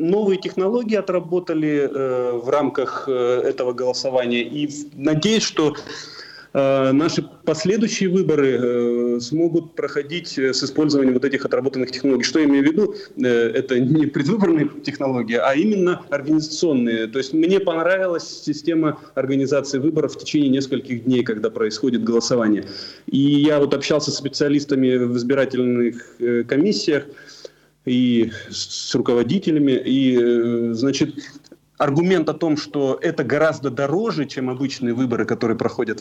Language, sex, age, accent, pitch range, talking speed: Russian, male, 30-49, native, 125-155 Hz, 135 wpm